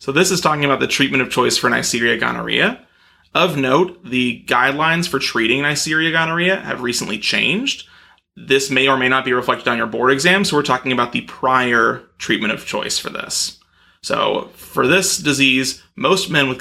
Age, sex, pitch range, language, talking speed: 30-49, male, 130-170 Hz, English, 190 wpm